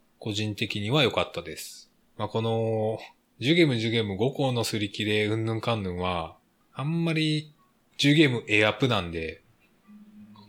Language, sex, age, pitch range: Japanese, male, 20-39, 100-145 Hz